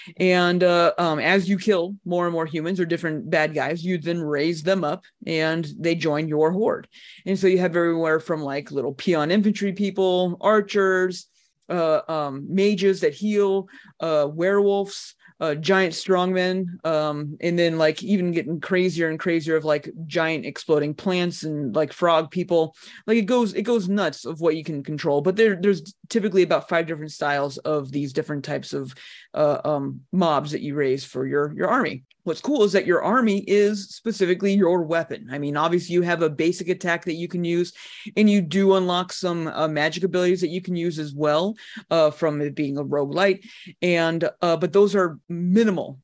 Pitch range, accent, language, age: 155-190 Hz, American, English, 30-49